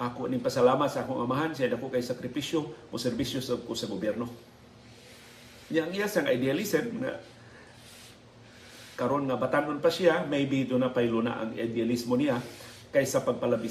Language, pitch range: Filipino, 120-165 Hz